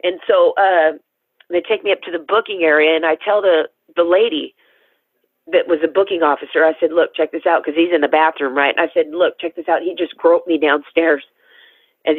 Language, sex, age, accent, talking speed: English, female, 40-59, American, 230 wpm